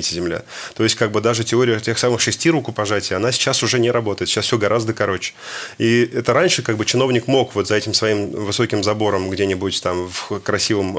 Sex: male